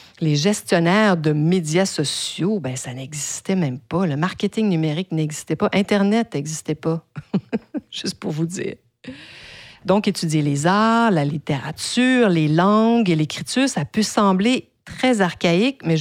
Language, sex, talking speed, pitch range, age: French, female, 140 wpm, 160-225 Hz, 50-69